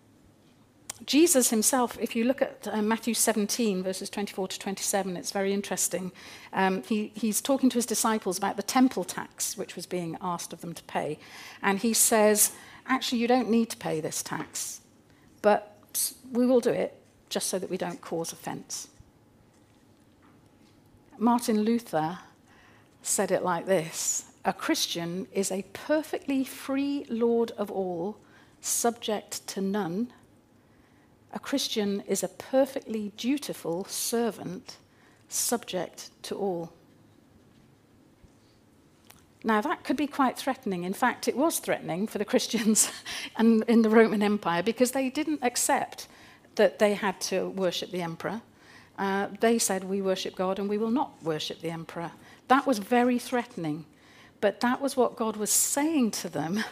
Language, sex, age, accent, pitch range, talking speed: English, female, 50-69, British, 190-245 Hz, 150 wpm